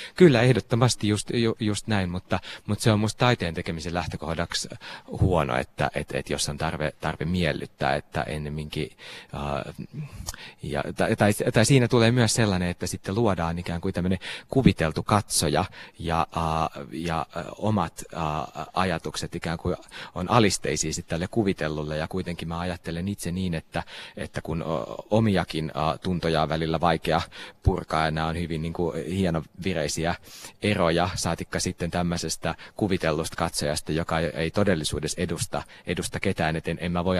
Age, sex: 30-49, male